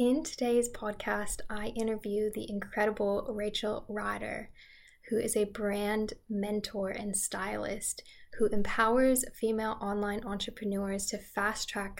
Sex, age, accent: female, 10-29, American